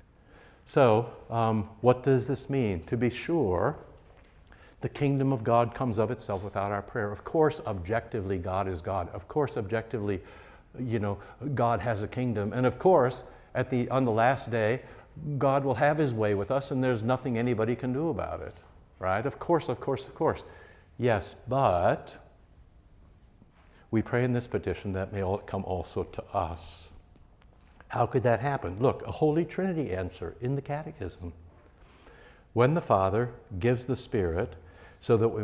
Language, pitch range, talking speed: English, 90-125 Hz, 165 wpm